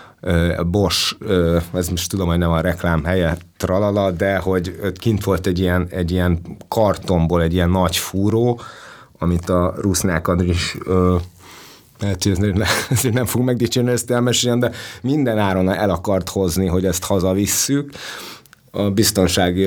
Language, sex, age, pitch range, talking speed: Hungarian, male, 30-49, 85-100 Hz, 135 wpm